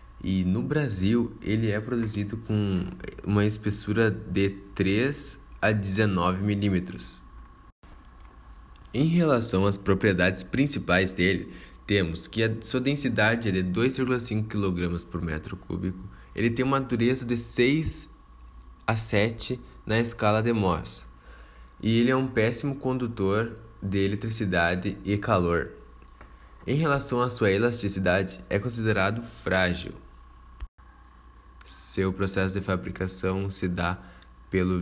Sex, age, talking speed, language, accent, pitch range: male, 20-39, 120 wpm, Portuguese, Brazilian, 90-105 Hz